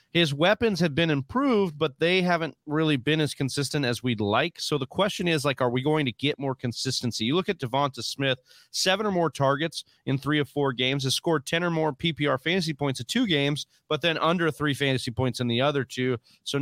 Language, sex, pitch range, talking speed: English, male, 130-155 Hz, 230 wpm